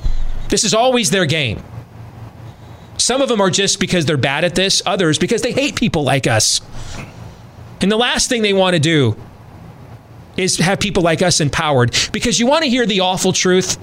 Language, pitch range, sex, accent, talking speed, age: English, 115-180 Hz, male, American, 190 wpm, 40-59